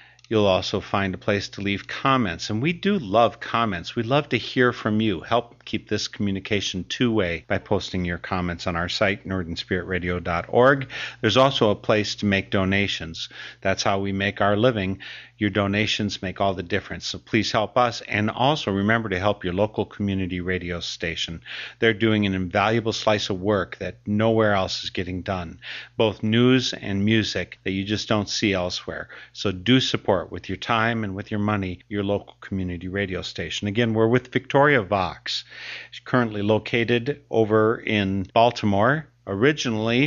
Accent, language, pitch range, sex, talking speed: American, English, 95-115 Hz, male, 170 wpm